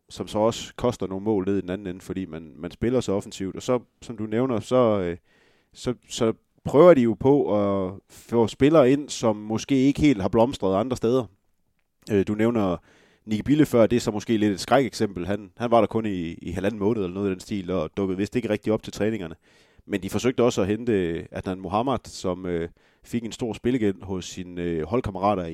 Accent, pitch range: native, 95-115 Hz